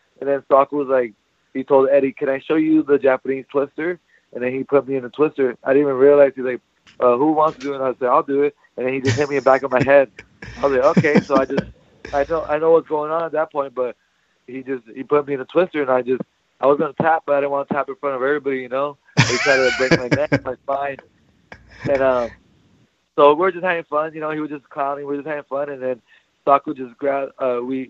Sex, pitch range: male, 130-145 Hz